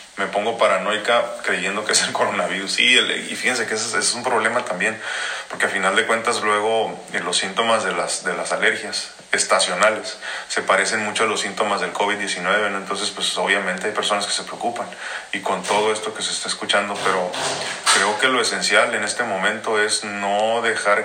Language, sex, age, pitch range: Spanish, male, 40-59, 95-110 Hz